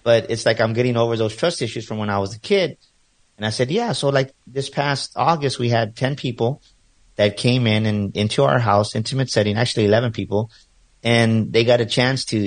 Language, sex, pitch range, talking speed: English, male, 105-130 Hz, 220 wpm